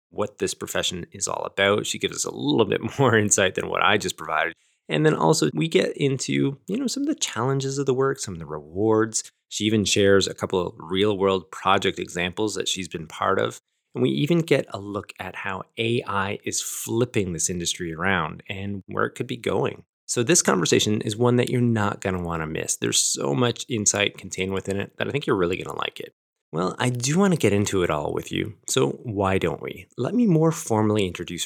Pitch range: 95-130 Hz